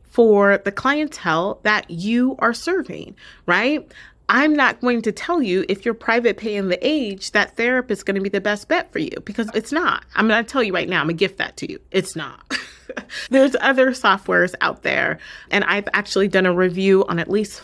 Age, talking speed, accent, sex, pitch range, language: 30-49, 220 wpm, American, female, 185-240 Hz, English